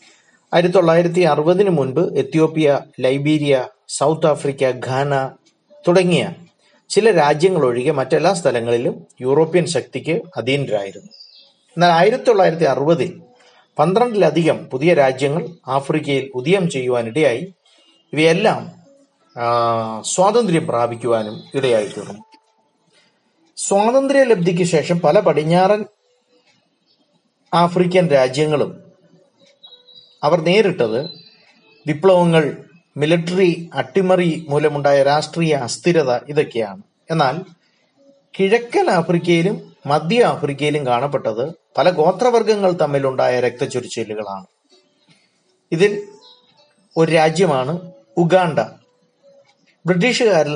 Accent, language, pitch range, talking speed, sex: native, Malayalam, 140-185 Hz, 75 wpm, male